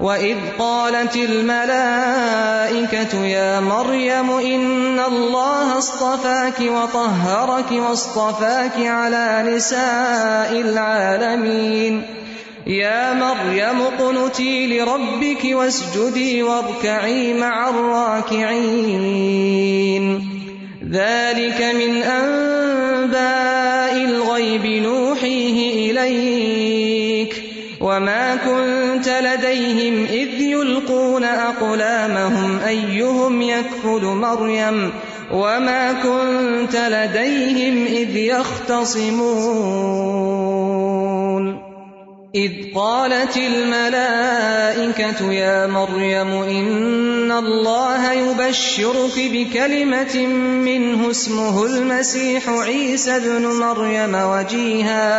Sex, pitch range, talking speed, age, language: male, 215-255 Hz, 65 wpm, 30-49, Urdu